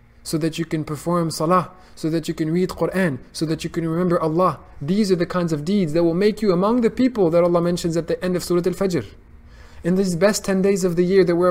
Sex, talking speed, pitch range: male, 260 wpm, 135-180 Hz